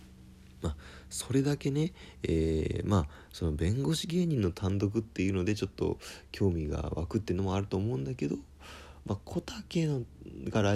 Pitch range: 75-105 Hz